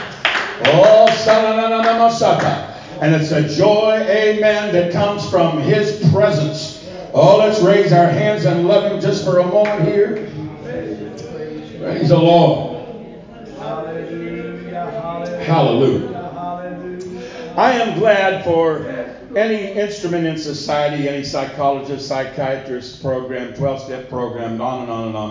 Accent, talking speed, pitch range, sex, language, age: American, 120 wpm, 135-180 Hz, male, English, 60-79